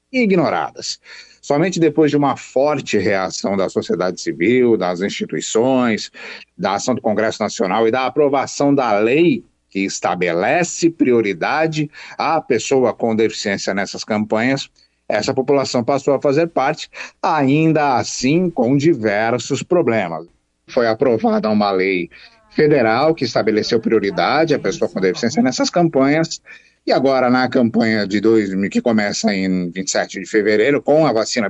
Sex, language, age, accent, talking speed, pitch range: male, Portuguese, 50-69, Brazilian, 135 wpm, 110-160 Hz